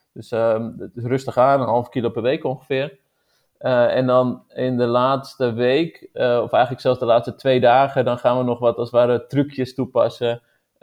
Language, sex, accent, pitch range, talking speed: Dutch, male, Dutch, 115-130 Hz, 200 wpm